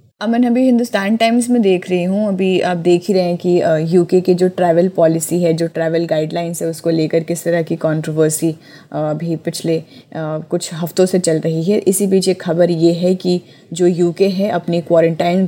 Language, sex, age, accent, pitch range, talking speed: Hindi, female, 20-39, native, 165-185 Hz, 205 wpm